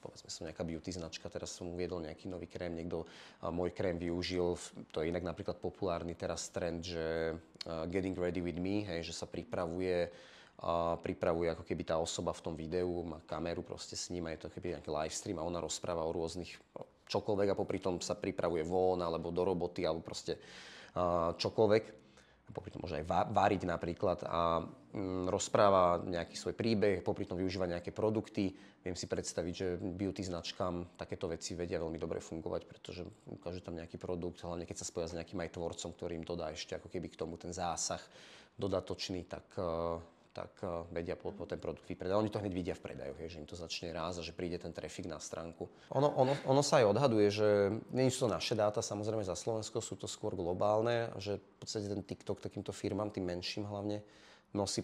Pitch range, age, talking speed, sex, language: 85-105 Hz, 30-49, 195 wpm, male, Slovak